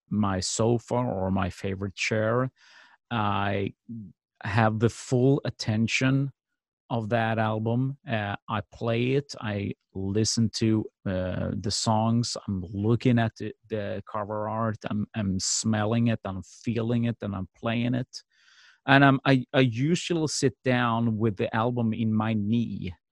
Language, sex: English, male